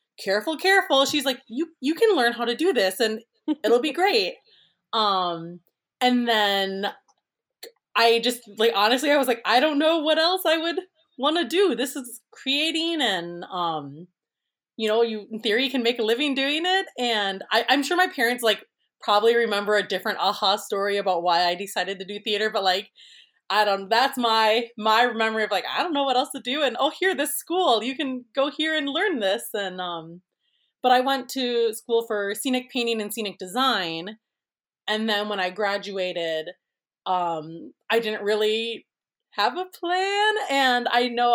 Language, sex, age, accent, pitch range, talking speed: English, female, 20-39, American, 205-275 Hz, 185 wpm